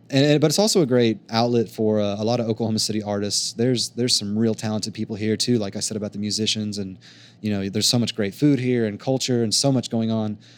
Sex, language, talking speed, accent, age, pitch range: male, English, 255 wpm, American, 30-49, 100-120 Hz